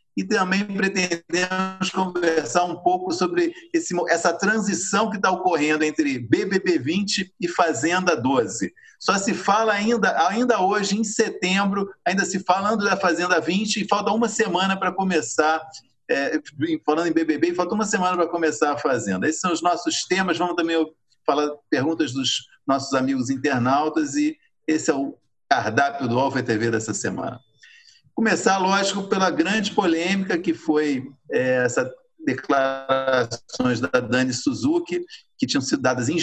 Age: 50-69